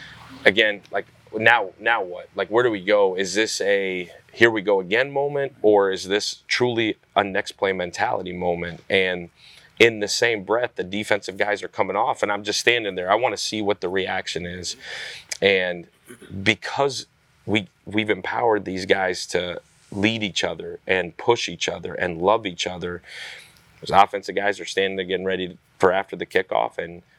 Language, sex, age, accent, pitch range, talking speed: English, male, 30-49, American, 95-120 Hz, 185 wpm